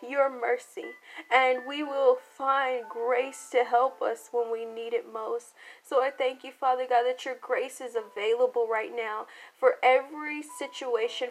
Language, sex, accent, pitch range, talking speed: English, female, American, 240-285 Hz, 165 wpm